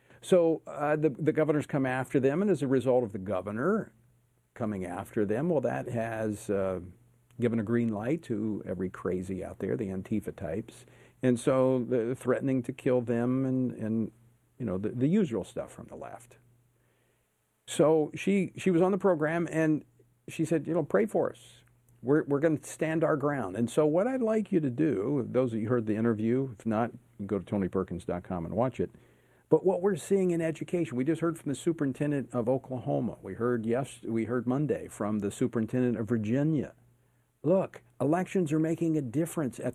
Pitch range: 120-155 Hz